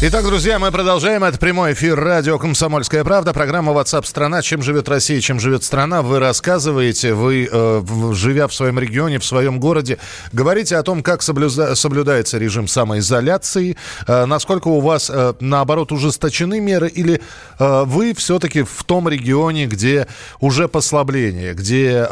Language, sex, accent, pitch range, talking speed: Russian, male, native, 120-155 Hz, 140 wpm